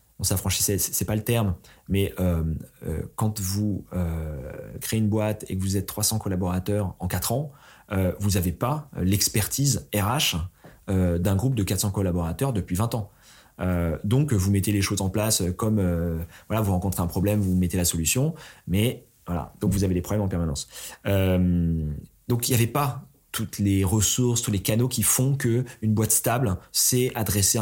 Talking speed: 185 wpm